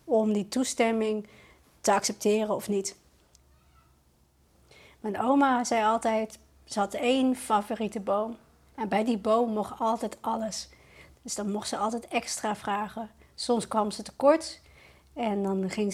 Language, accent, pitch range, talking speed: Dutch, Dutch, 205-240 Hz, 140 wpm